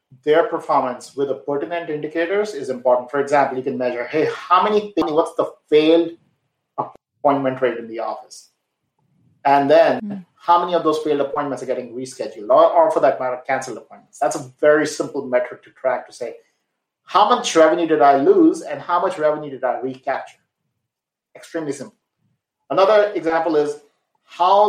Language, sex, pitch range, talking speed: English, male, 130-170 Hz, 170 wpm